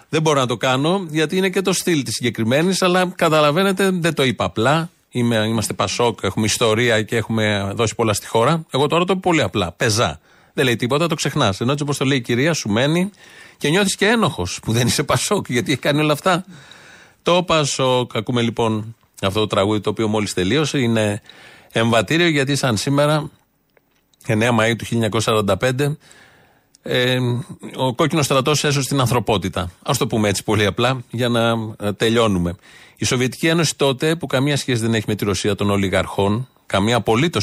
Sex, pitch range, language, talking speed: male, 110-145 Hz, Greek, 180 wpm